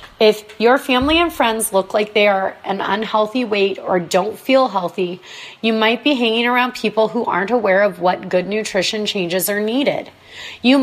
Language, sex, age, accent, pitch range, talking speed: English, female, 30-49, American, 195-245 Hz, 185 wpm